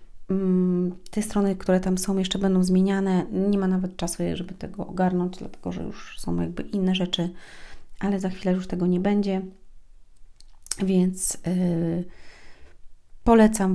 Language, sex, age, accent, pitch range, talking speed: Polish, female, 30-49, native, 180-205 Hz, 135 wpm